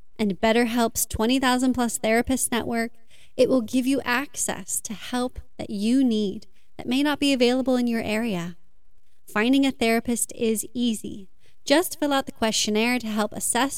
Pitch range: 210-255 Hz